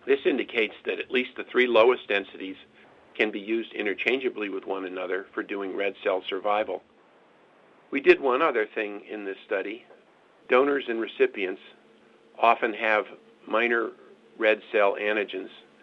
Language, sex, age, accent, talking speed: English, male, 50-69, American, 145 wpm